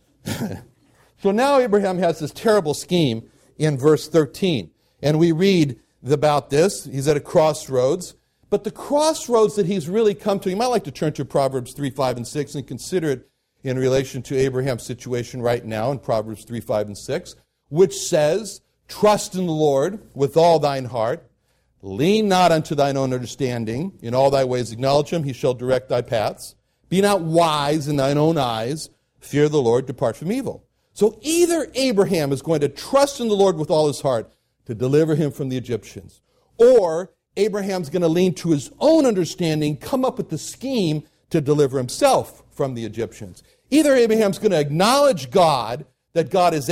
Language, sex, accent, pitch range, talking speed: English, male, American, 130-185 Hz, 185 wpm